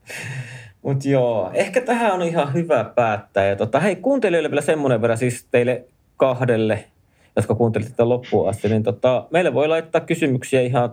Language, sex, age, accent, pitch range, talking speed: Finnish, male, 30-49, native, 105-135 Hz, 160 wpm